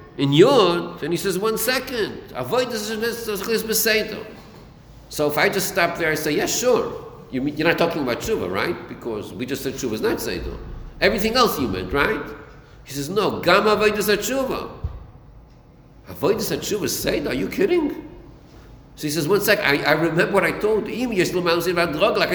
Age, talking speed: 50-69, 190 wpm